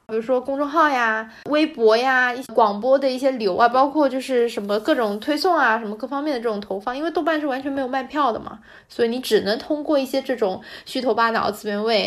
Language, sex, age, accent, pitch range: Chinese, female, 20-39, native, 220-290 Hz